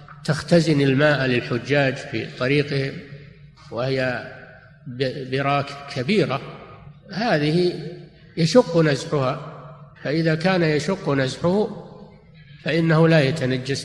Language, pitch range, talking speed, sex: Arabic, 140-165 Hz, 80 wpm, male